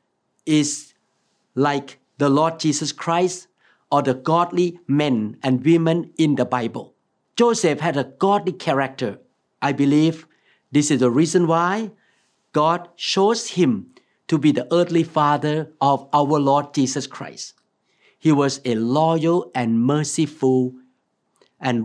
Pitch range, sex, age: 135-175 Hz, male, 50-69